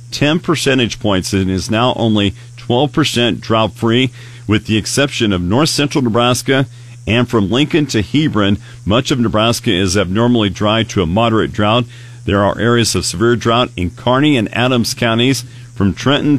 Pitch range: 105-125 Hz